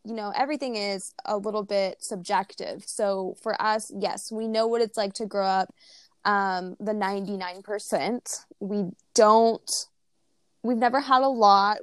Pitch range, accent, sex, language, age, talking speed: 195-230 Hz, American, female, English, 10-29, 150 wpm